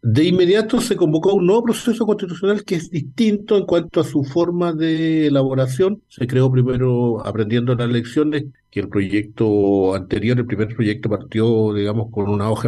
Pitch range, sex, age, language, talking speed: 115-155 Hz, male, 50-69, Spanish, 170 wpm